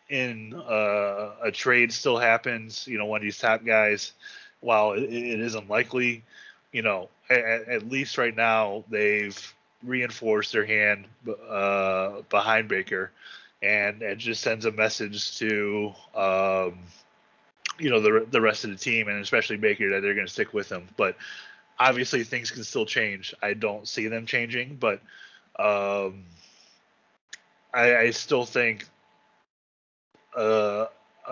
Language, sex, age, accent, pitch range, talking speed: English, male, 20-39, American, 105-120 Hz, 145 wpm